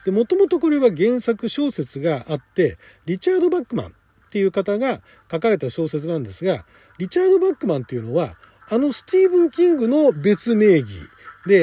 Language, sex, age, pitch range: Japanese, male, 40-59, 160-255 Hz